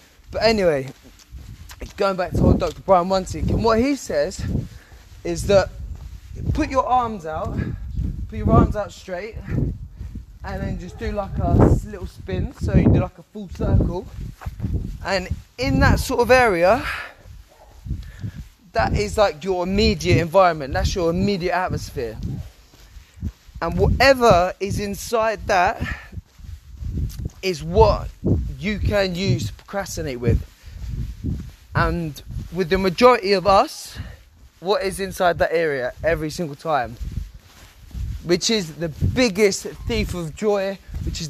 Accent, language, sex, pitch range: British, English, male, 120-200 Hz